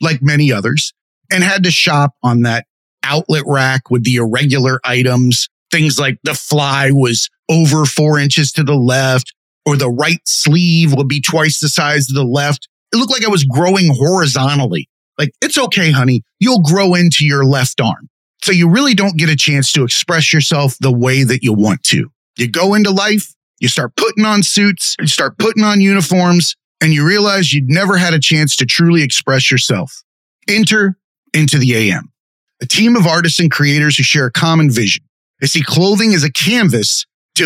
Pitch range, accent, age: 135-185 Hz, American, 30-49